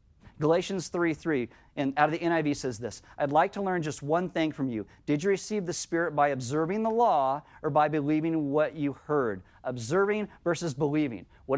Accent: American